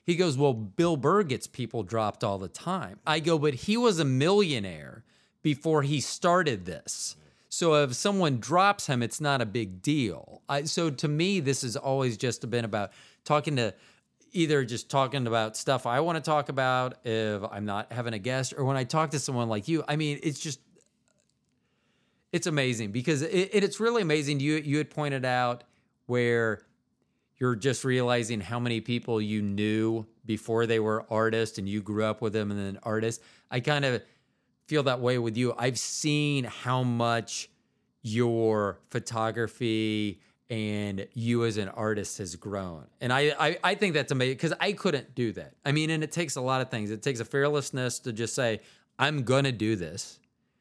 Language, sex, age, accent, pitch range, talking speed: English, male, 30-49, American, 110-150 Hz, 190 wpm